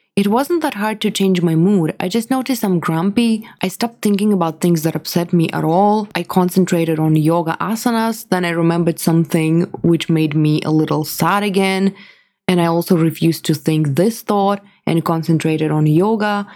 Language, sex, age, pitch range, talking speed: English, female, 20-39, 165-215 Hz, 185 wpm